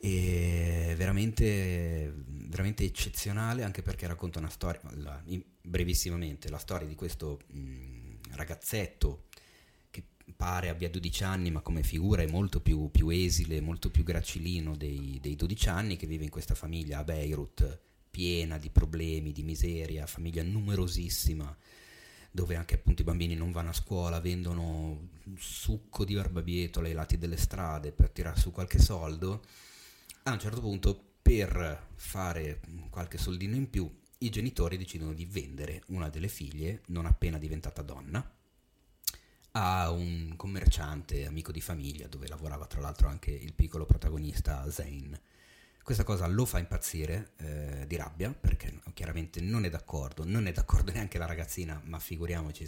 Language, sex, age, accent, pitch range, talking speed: Italian, male, 30-49, native, 75-95 Hz, 150 wpm